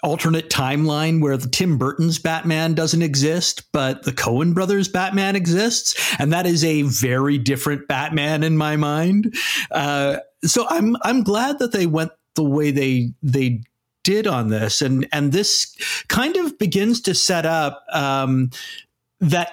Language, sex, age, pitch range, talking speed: English, male, 50-69, 135-175 Hz, 155 wpm